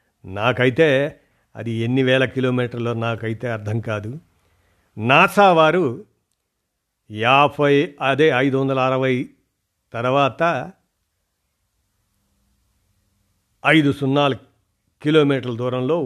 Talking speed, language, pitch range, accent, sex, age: 70 wpm, Telugu, 115-145 Hz, native, male, 50-69